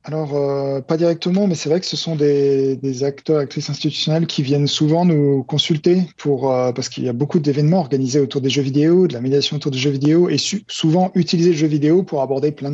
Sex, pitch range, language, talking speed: male, 125-155 Hz, French, 230 wpm